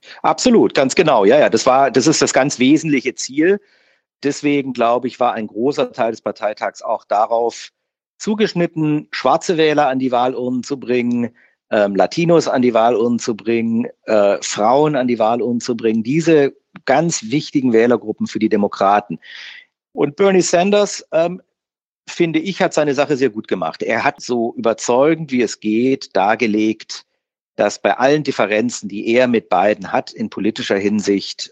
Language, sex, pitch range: German, male, 110-155 Hz